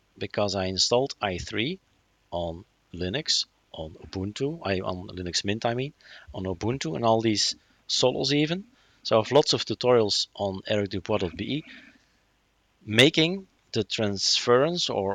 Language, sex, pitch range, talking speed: English, male, 100-125 Hz, 125 wpm